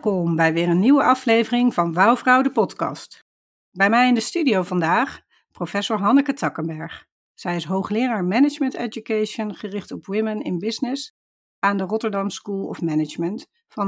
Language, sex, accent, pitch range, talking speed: Dutch, female, Dutch, 175-225 Hz, 155 wpm